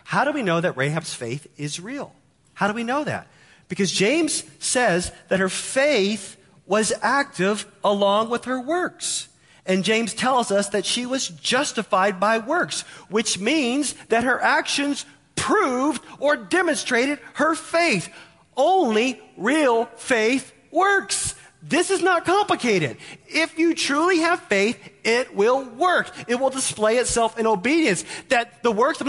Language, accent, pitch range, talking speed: English, American, 175-255 Hz, 150 wpm